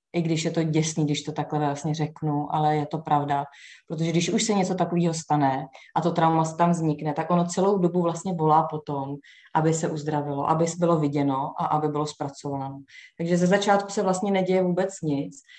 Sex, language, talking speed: female, Czech, 195 wpm